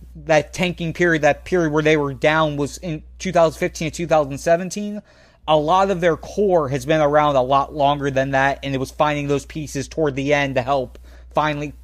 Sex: male